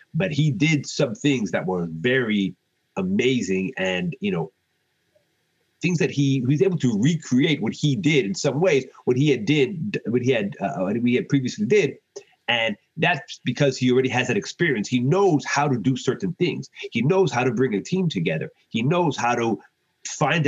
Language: English